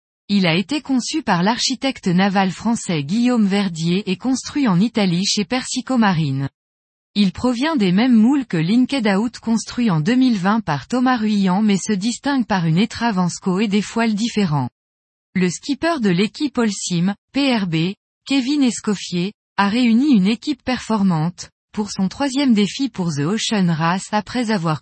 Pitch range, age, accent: 180-240 Hz, 20-39, French